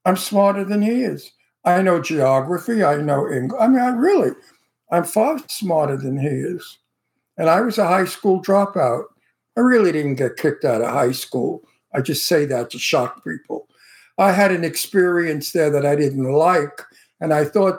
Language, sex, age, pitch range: English, male, 60-79, 160-210 Hz